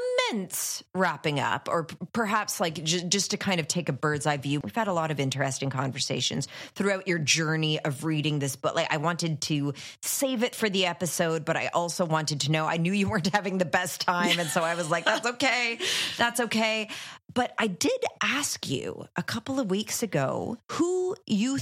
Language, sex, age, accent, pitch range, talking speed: English, female, 30-49, American, 150-200 Hz, 205 wpm